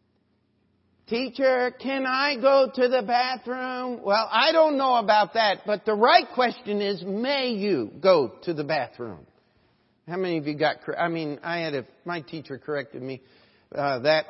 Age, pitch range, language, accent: 50-69, 180-245 Hz, English, American